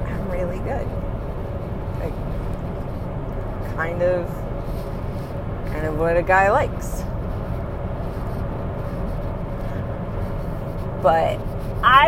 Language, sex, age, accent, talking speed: English, female, 30-49, American, 60 wpm